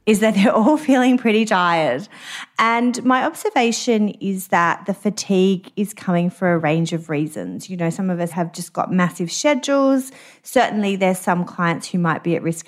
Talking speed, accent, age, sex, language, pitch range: 190 wpm, Australian, 30-49, female, English, 165-215 Hz